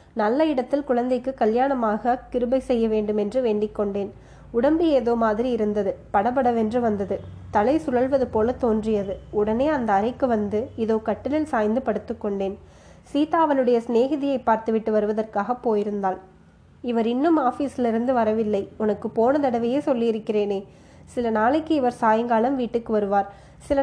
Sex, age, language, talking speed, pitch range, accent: female, 20-39, Tamil, 125 wpm, 215-255 Hz, native